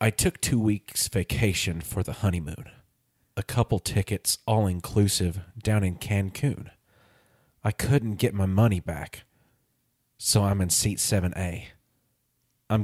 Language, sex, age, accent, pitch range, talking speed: English, male, 30-49, American, 100-120 Hz, 125 wpm